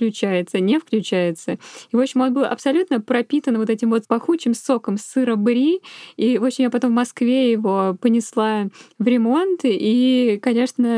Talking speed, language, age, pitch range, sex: 165 wpm, Russian, 20-39, 215-255 Hz, female